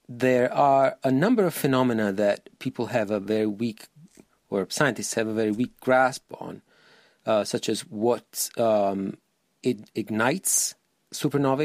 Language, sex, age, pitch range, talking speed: English, male, 40-59, 105-130 Hz, 140 wpm